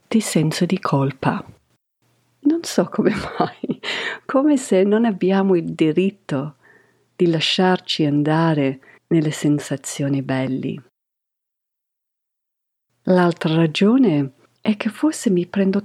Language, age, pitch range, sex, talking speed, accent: Italian, 50-69, 145-200 Hz, female, 100 wpm, native